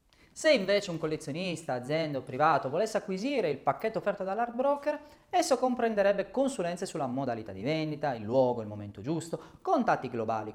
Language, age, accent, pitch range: Italian, 30-49, native, 150-225 Hz